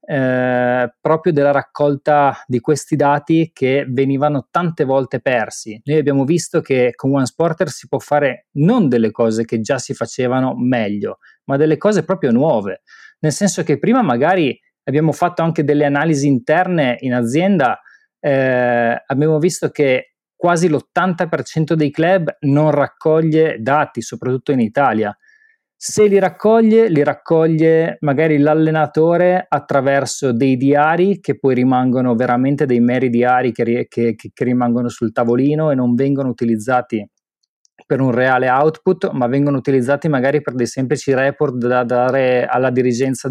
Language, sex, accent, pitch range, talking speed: Italian, male, native, 125-160 Hz, 145 wpm